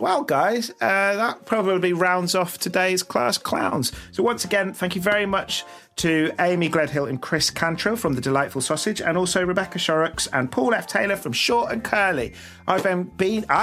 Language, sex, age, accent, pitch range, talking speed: English, male, 30-49, British, 130-190 Hz, 185 wpm